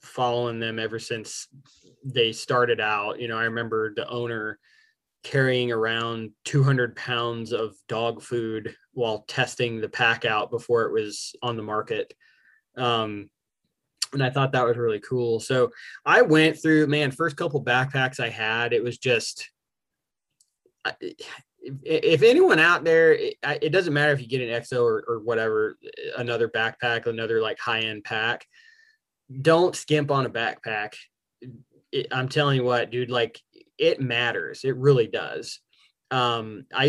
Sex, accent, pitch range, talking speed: male, American, 115-155 Hz, 150 wpm